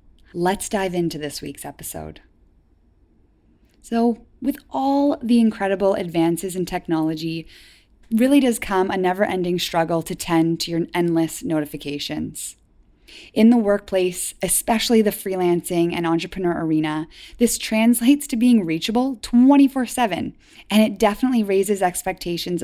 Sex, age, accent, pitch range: female, 20-39, American, 165-220 Hz